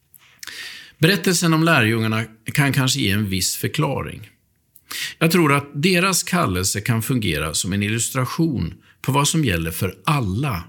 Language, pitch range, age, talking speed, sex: Swedish, 100-150 Hz, 50-69, 140 wpm, male